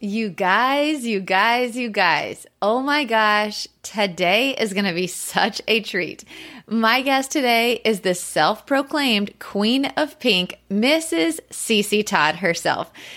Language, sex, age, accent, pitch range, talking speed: English, female, 30-49, American, 190-245 Hz, 135 wpm